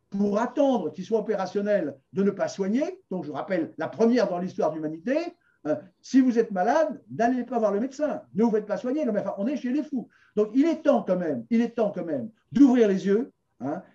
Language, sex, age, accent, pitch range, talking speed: French, male, 50-69, French, 200-255 Hz, 230 wpm